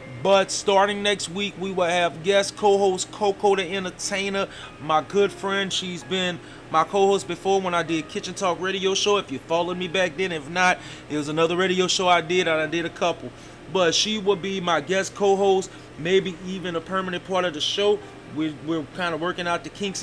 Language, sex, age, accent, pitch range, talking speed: English, male, 30-49, American, 150-185 Hz, 205 wpm